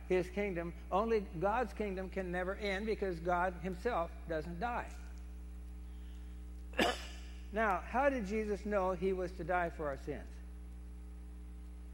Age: 60-79